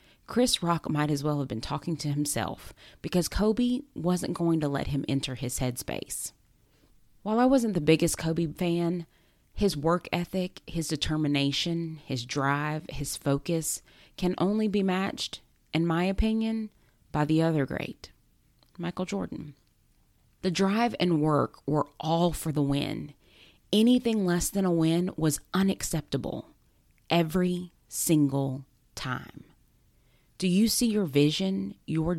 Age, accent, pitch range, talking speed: 30-49, American, 145-195 Hz, 140 wpm